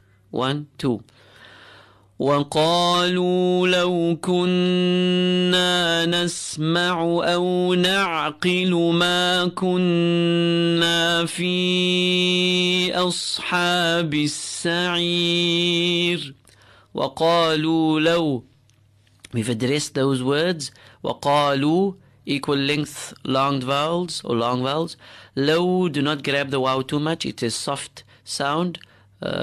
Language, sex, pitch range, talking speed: English, male, 135-175 Hz, 75 wpm